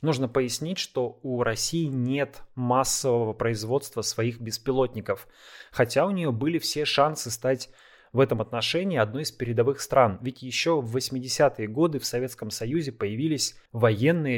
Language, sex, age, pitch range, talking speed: Russian, male, 20-39, 115-145 Hz, 140 wpm